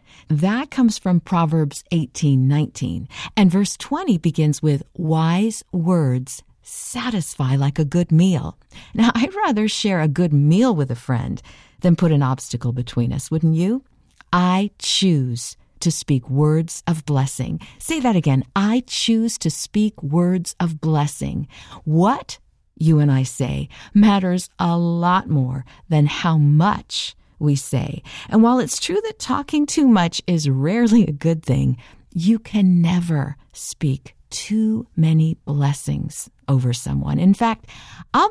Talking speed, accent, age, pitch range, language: 145 wpm, American, 50-69, 140-195 Hz, English